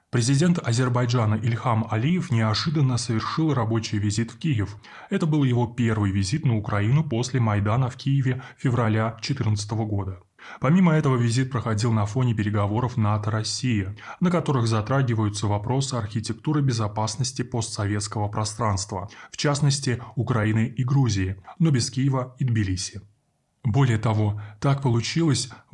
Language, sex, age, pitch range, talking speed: Russian, male, 20-39, 105-130 Hz, 125 wpm